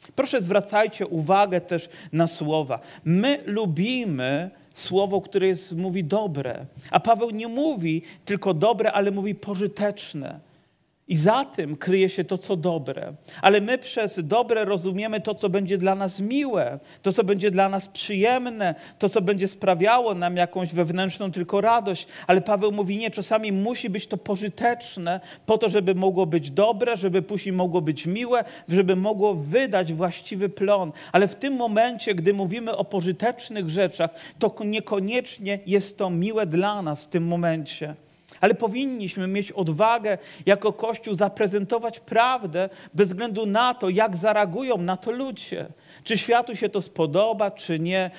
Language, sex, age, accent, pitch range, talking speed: Polish, male, 40-59, native, 185-220 Hz, 155 wpm